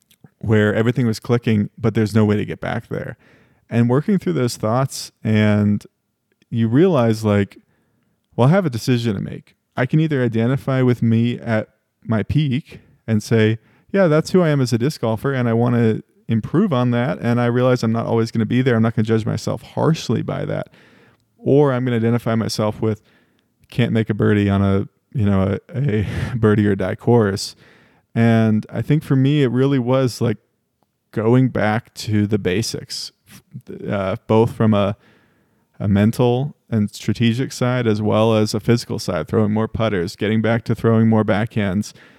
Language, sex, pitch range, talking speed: English, male, 110-125 Hz, 190 wpm